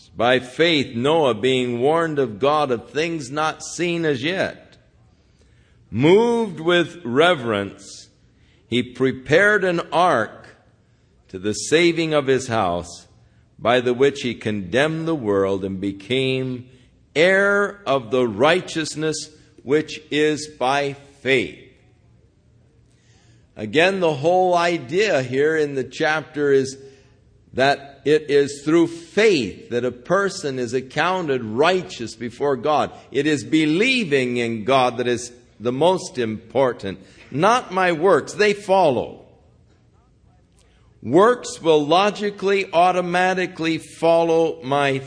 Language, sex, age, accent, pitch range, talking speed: English, male, 50-69, American, 120-165 Hz, 115 wpm